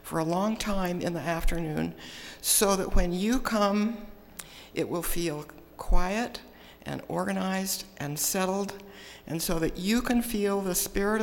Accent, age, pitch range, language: American, 60-79, 160-195 Hz, English